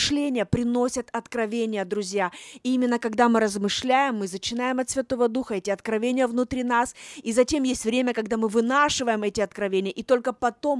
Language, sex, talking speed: Russian, female, 165 wpm